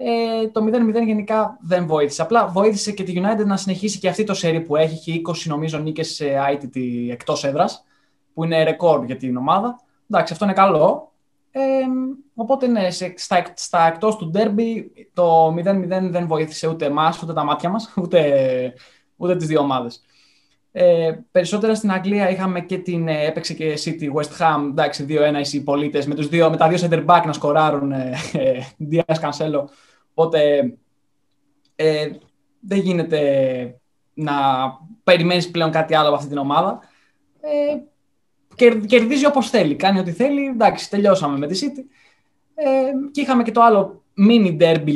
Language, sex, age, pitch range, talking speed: Greek, male, 20-39, 145-205 Hz, 160 wpm